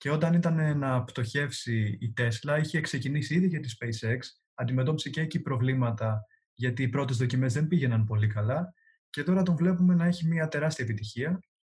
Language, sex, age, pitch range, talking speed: Greek, male, 20-39, 120-165 Hz, 175 wpm